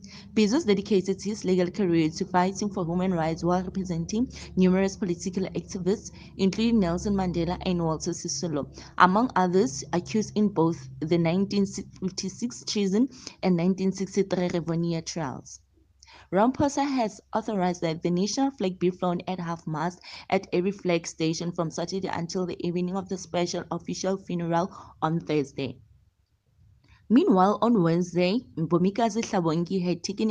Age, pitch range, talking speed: 20-39, 165-195 Hz, 135 wpm